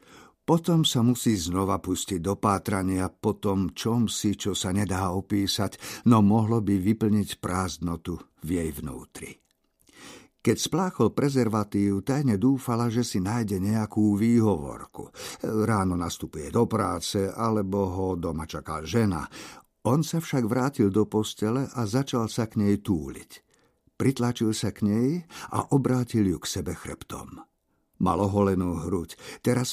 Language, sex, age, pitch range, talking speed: Slovak, male, 50-69, 95-120 Hz, 135 wpm